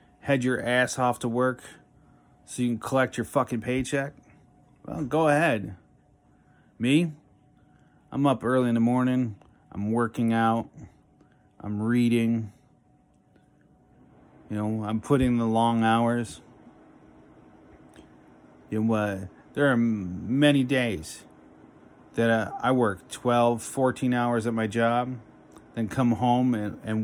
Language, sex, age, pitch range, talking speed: English, male, 30-49, 105-125 Hz, 130 wpm